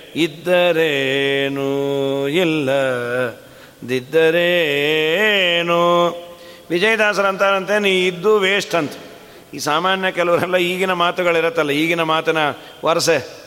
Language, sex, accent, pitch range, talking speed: Kannada, male, native, 160-230 Hz, 65 wpm